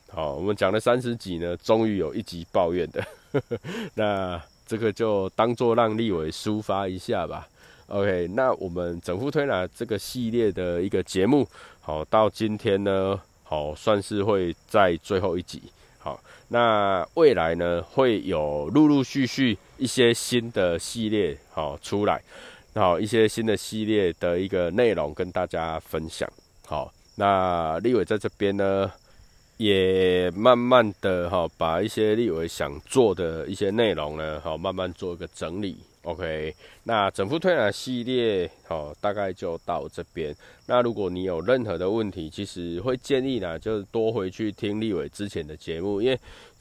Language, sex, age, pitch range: Chinese, male, 20-39, 85-110 Hz